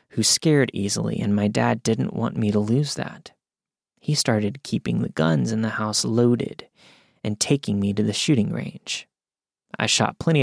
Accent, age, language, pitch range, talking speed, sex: American, 30-49, English, 110-150 Hz, 180 wpm, male